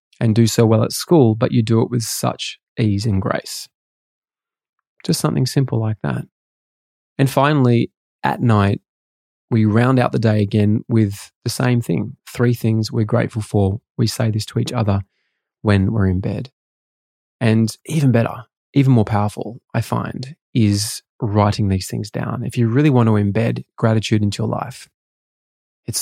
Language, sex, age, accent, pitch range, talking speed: English, male, 20-39, Australian, 105-125 Hz, 170 wpm